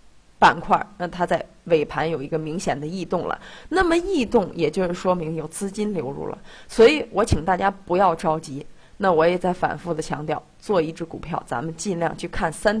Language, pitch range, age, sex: Chinese, 160-205 Hz, 30-49, female